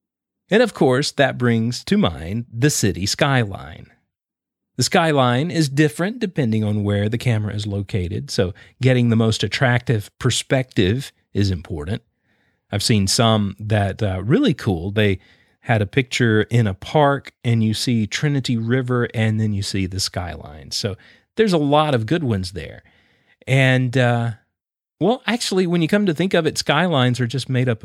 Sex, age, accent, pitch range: male, 40-59, American, 110-150 Hz